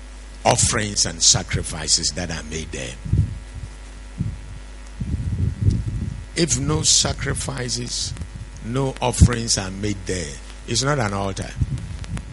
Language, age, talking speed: English, 60-79, 95 wpm